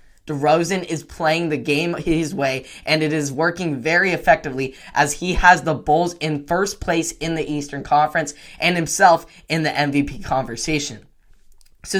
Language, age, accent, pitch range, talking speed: English, 10-29, American, 145-175 Hz, 160 wpm